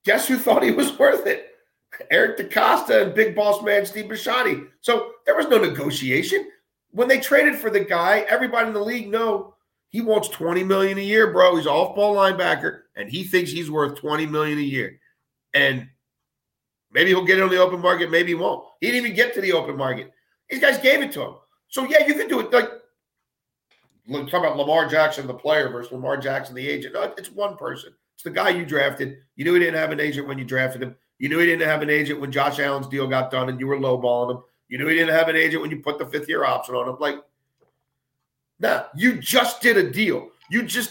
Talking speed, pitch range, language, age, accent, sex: 230 wpm, 140-215 Hz, English, 40-59, American, male